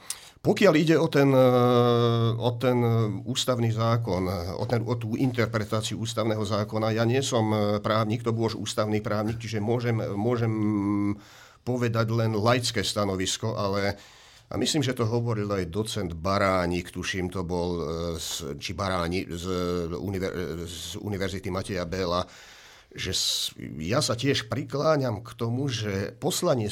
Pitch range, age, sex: 100-120 Hz, 50-69, male